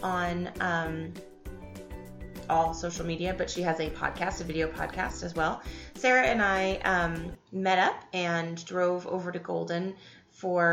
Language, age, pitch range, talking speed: English, 20-39, 165-190 Hz, 150 wpm